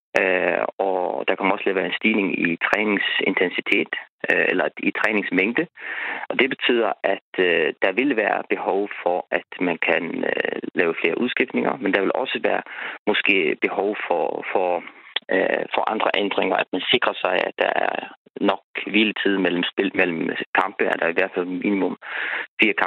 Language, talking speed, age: Danish, 145 wpm, 30-49